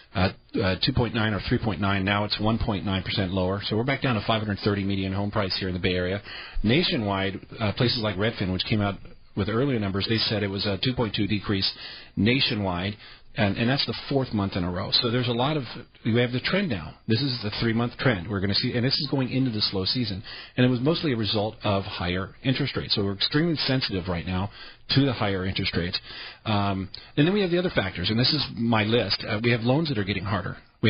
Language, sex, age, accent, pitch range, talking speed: English, male, 40-59, American, 100-120 Hz, 235 wpm